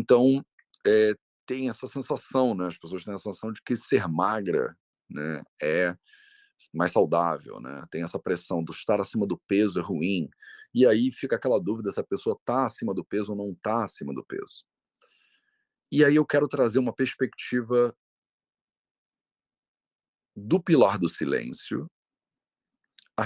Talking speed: 150 wpm